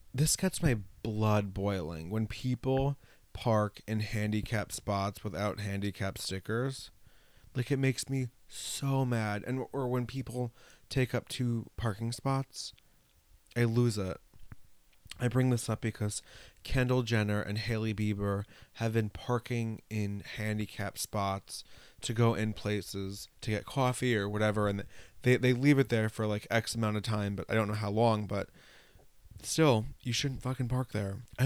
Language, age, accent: English, 20-39, American